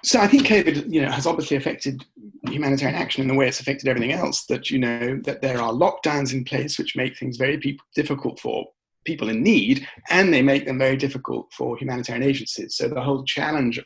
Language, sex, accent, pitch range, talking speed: English, male, British, 120-150 Hz, 215 wpm